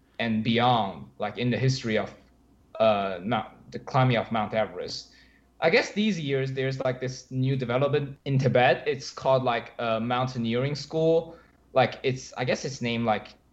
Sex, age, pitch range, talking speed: male, 20-39, 115-135 Hz, 170 wpm